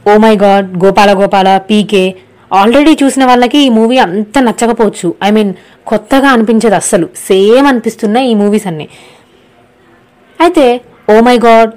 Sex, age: female, 20-39